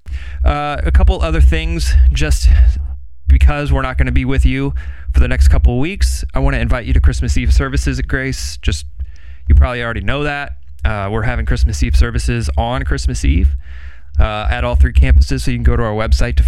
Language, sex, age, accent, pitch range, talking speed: English, male, 30-49, American, 65-75 Hz, 215 wpm